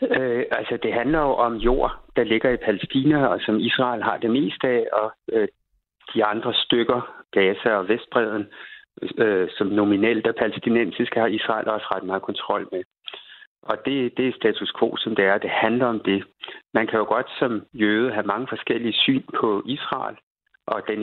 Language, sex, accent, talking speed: Danish, male, native, 185 wpm